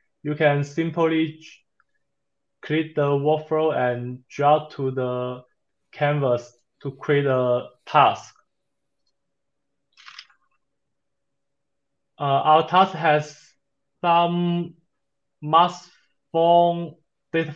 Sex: male